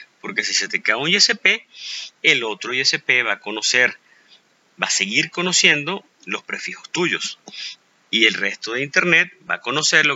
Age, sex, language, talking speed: 30-49, male, Spanish, 165 wpm